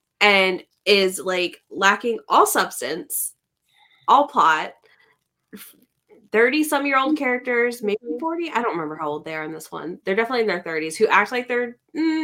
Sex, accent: female, American